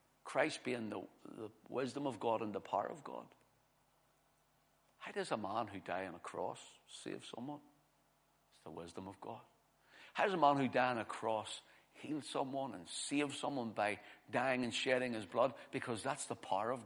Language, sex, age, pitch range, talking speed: English, male, 60-79, 115-145 Hz, 190 wpm